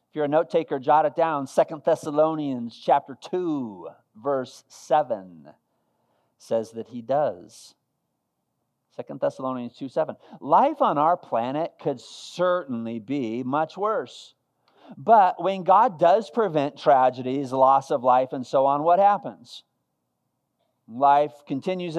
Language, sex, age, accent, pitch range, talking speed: English, male, 50-69, American, 145-200 Hz, 125 wpm